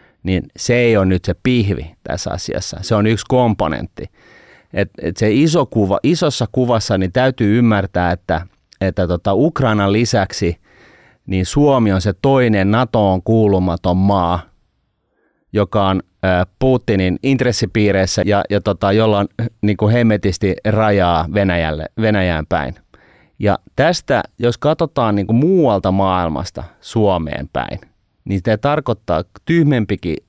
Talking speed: 130 wpm